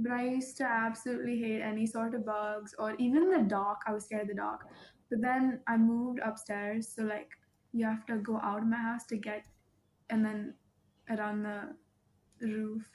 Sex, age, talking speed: female, 10-29, 195 wpm